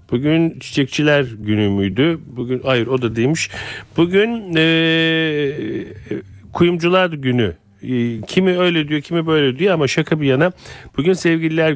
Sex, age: male, 40-59